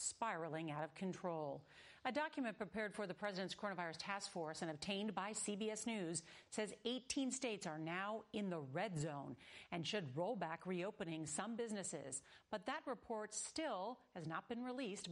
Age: 40-59